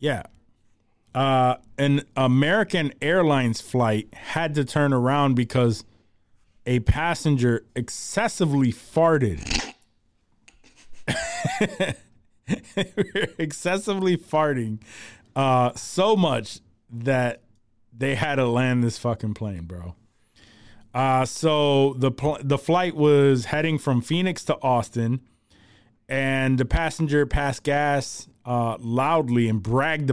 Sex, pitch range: male, 110-145 Hz